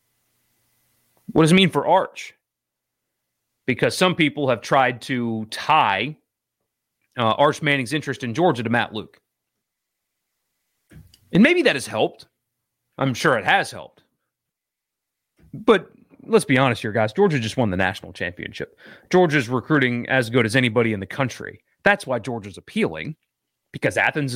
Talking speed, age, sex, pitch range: 145 wpm, 30-49, male, 115-155 Hz